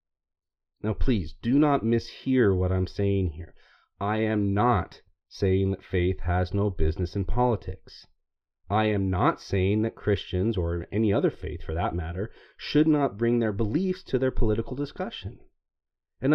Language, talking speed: English, 160 wpm